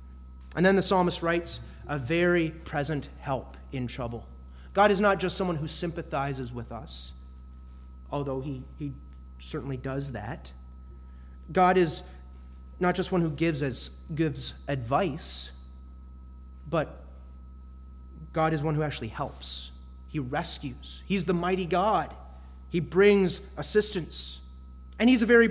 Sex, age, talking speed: male, 30-49, 130 wpm